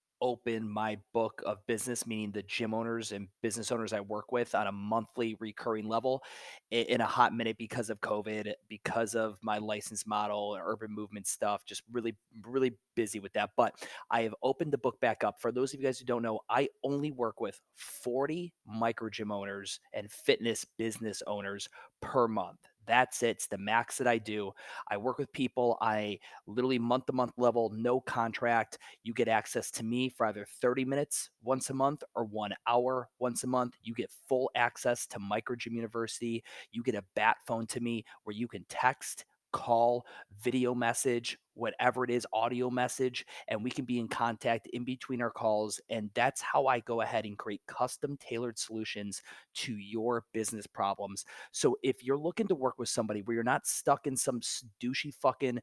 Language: English